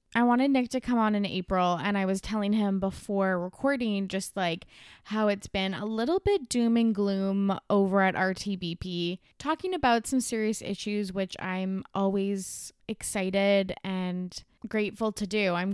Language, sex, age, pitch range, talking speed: English, female, 20-39, 195-245 Hz, 165 wpm